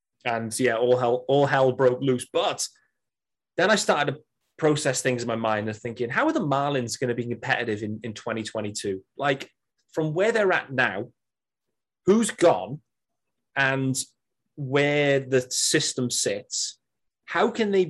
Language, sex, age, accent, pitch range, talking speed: English, male, 30-49, British, 120-180 Hz, 160 wpm